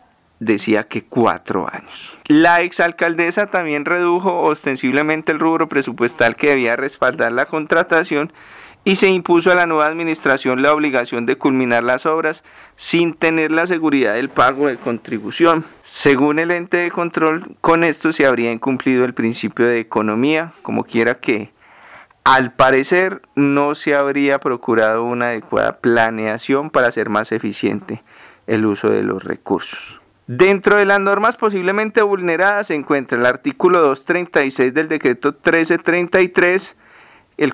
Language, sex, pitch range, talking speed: Spanish, male, 130-175 Hz, 140 wpm